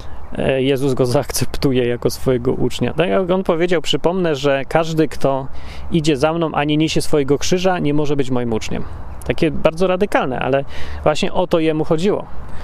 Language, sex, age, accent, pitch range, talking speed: Polish, male, 30-49, native, 125-160 Hz, 170 wpm